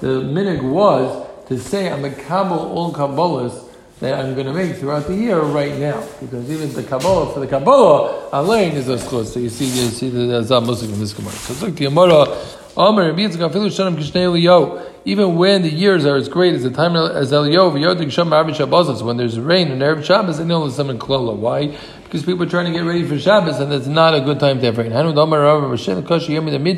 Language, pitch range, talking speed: English, 135-175 Hz, 195 wpm